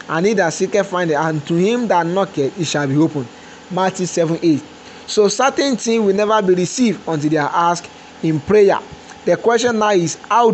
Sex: male